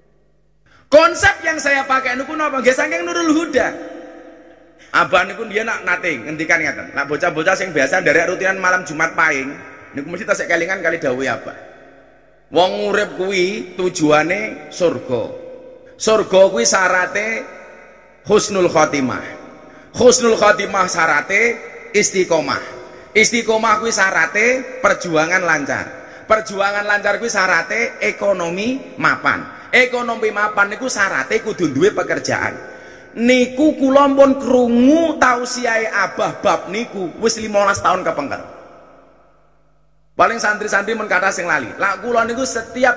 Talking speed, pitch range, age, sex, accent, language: 120 wpm, 185-255 Hz, 30-49, male, native, Indonesian